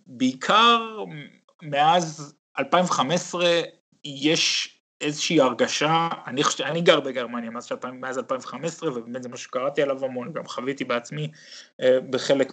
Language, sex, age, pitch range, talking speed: Hebrew, male, 30-49, 130-160 Hz, 105 wpm